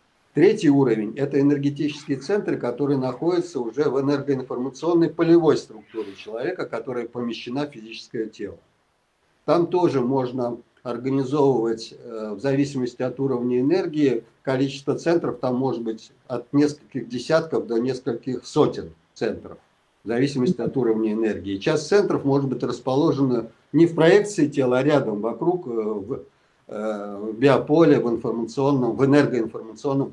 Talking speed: 125 wpm